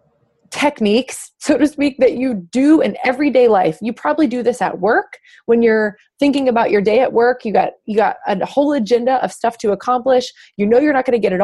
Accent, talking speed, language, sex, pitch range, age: American, 225 wpm, English, female, 195-265 Hz, 20-39